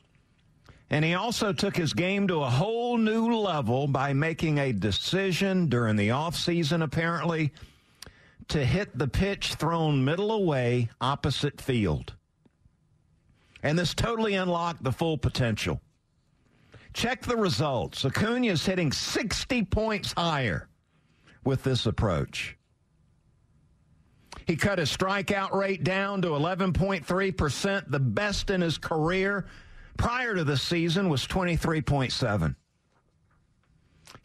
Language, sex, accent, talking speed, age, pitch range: English, male, American, 115 wpm, 50-69, 130-190 Hz